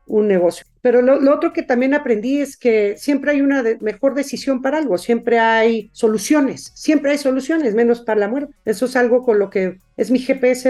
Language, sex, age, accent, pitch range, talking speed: Spanish, female, 50-69, Mexican, 210-255 Hz, 215 wpm